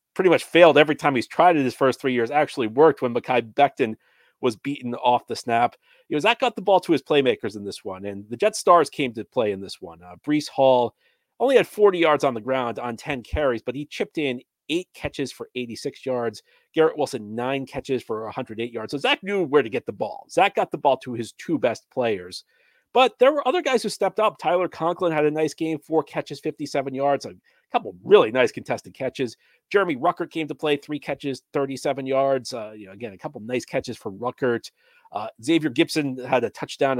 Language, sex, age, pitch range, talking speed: English, male, 40-59, 120-180 Hz, 225 wpm